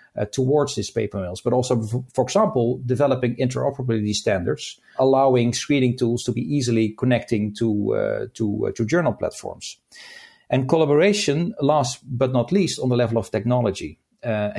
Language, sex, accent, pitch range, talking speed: English, male, Dutch, 115-140 Hz, 160 wpm